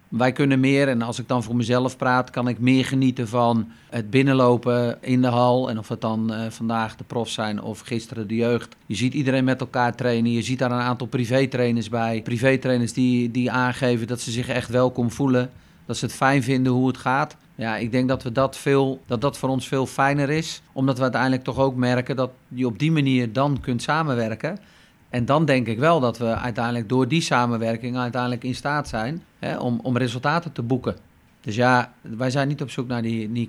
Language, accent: Dutch, Dutch